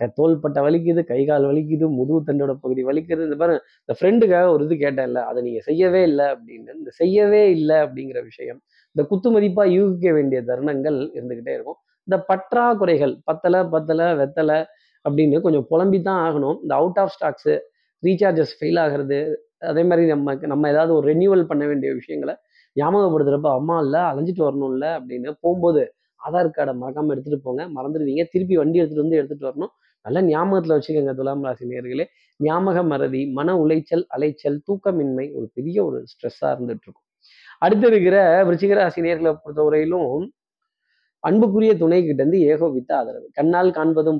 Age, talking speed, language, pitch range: 20-39, 145 wpm, Tamil, 145-185 Hz